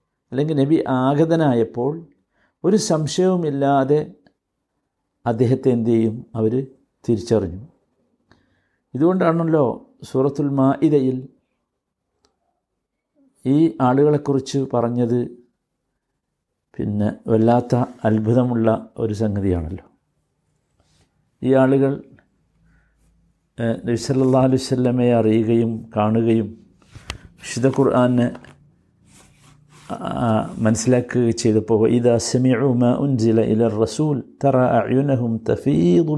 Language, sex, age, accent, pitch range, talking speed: Malayalam, male, 60-79, native, 115-135 Hz, 60 wpm